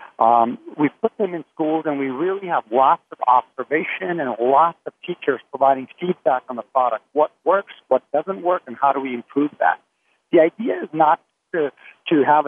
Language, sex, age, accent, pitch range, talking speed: English, male, 60-79, American, 125-170 Hz, 190 wpm